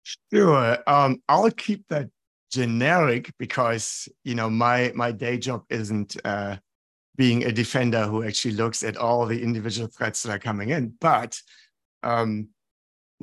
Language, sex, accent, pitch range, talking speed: English, male, German, 110-125 Hz, 145 wpm